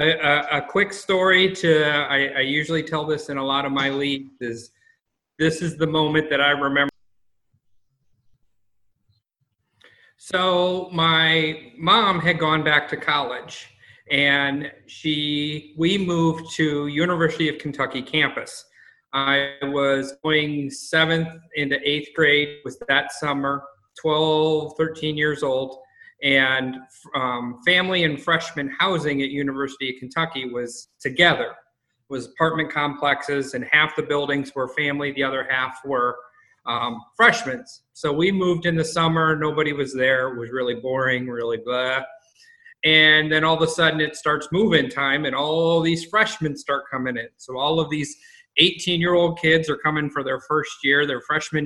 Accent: American